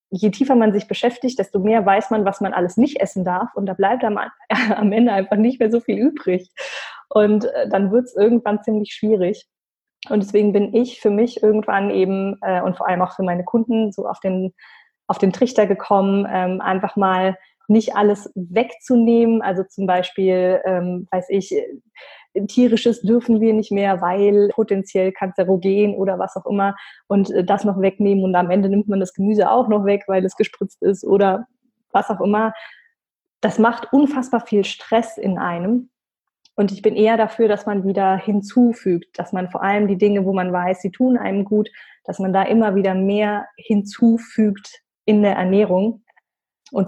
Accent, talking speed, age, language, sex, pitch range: German, 175 wpm, 20-39, German, female, 190-225 Hz